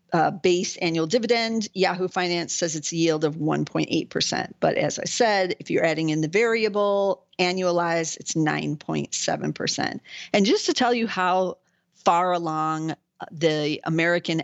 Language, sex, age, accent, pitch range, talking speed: English, female, 40-59, American, 160-190 Hz, 155 wpm